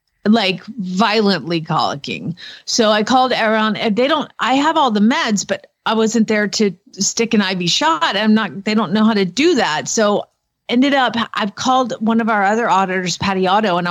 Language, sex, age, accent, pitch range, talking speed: English, female, 30-49, American, 195-235 Hz, 200 wpm